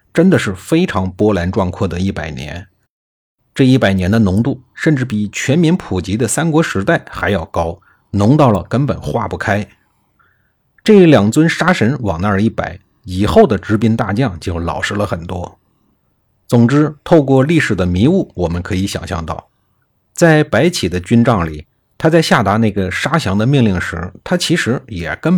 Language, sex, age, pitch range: Chinese, male, 50-69, 95-155 Hz